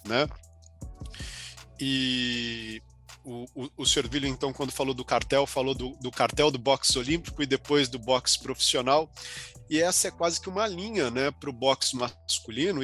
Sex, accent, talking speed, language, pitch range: male, Brazilian, 165 wpm, Portuguese, 115-160 Hz